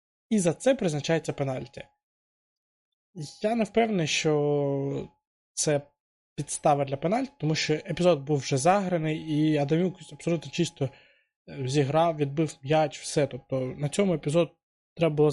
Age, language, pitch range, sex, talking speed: 20-39, Ukrainian, 140-180 Hz, male, 130 wpm